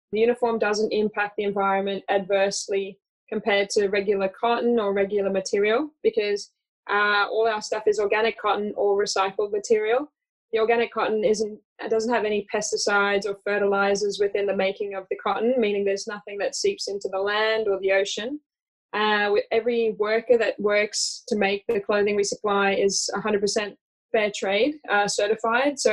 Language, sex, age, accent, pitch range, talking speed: English, female, 20-39, Australian, 200-225 Hz, 165 wpm